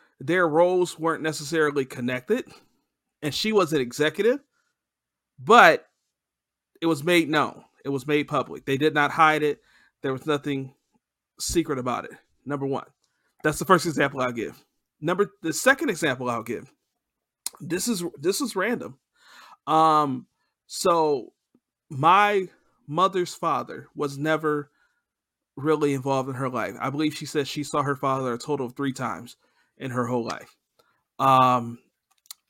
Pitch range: 135-165 Hz